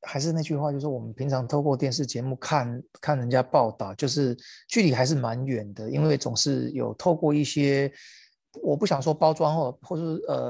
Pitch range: 125-155 Hz